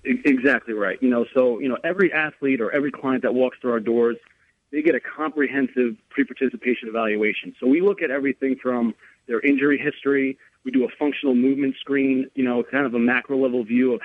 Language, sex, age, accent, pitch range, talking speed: English, male, 30-49, American, 125-140 Hz, 200 wpm